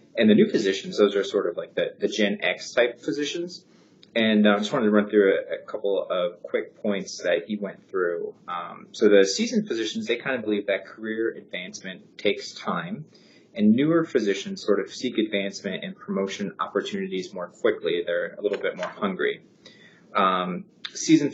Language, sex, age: English, male, 30-49